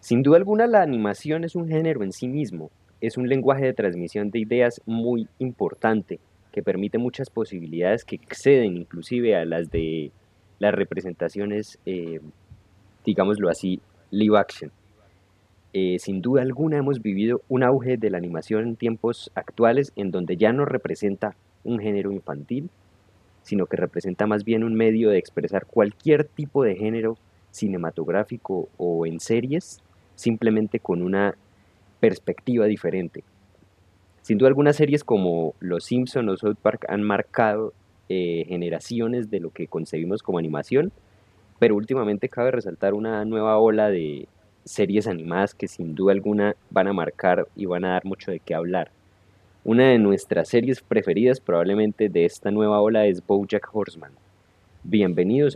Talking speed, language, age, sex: 150 wpm, Spanish, 20-39, male